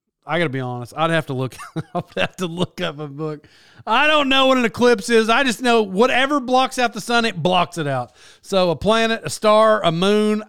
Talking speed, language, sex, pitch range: 235 wpm, English, male, 165-225 Hz